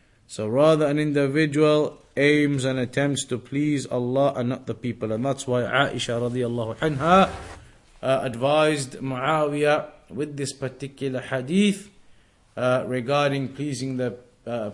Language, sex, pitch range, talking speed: English, male, 125-145 Hz, 125 wpm